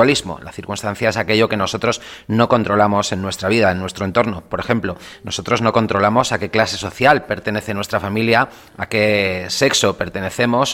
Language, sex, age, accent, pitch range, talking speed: Spanish, male, 30-49, Spanish, 95-115 Hz, 170 wpm